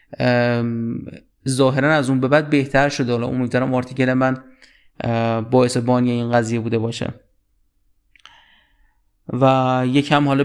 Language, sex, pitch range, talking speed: Persian, male, 125-155 Hz, 115 wpm